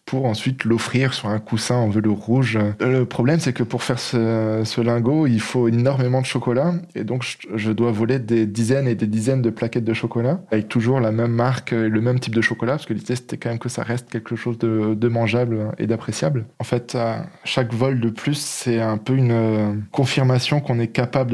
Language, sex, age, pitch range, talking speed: French, male, 20-39, 115-130 Hz, 220 wpm